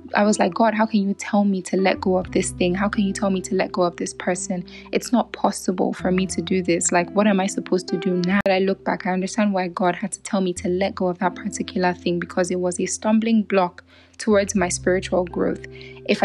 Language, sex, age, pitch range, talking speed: English, female, 10-29, 180-210 Hz, 260 wpm